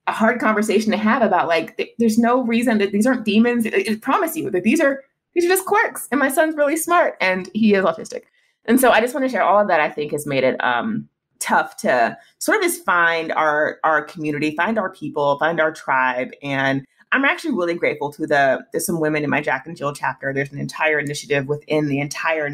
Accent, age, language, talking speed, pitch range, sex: American, 30-49, English, 235 wpm, 140-220 Hz, female